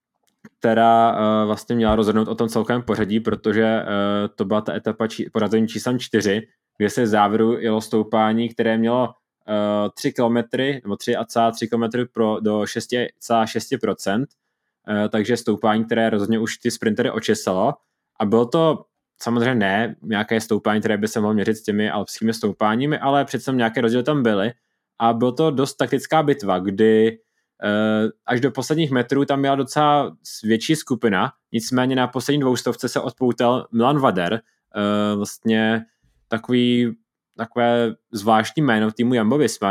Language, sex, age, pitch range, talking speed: Czech, male, 20-39, 110-125 Hz, 150 wpm